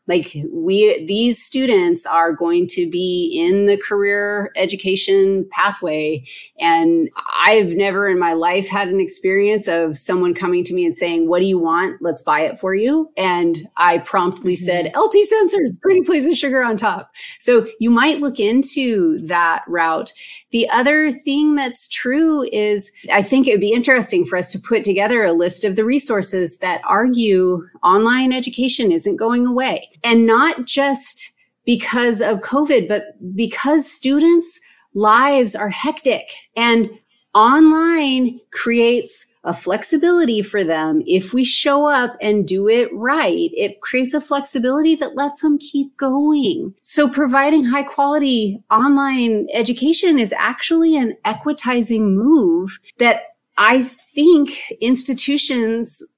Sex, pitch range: female, 195-290 Hz